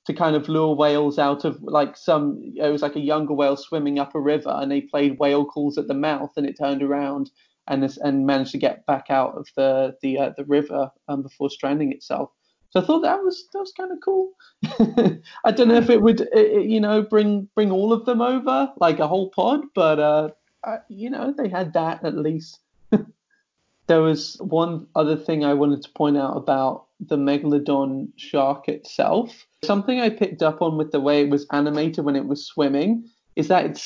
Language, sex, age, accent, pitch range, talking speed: English, male, 30-49, British, 145-210 Hz, 215 wpm